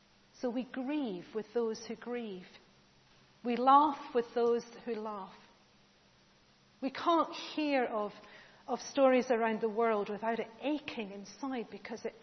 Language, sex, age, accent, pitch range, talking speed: English, female, 40-59, British, 185-240 Hz, 135 wpm